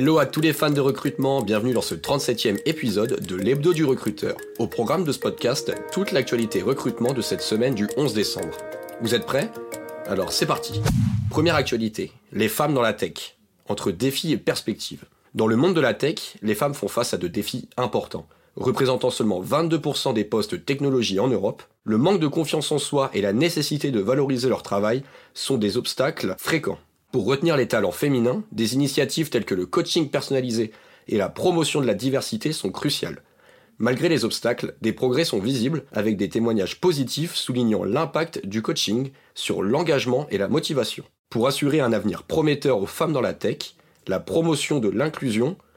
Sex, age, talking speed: male, 30-49, 185 wpm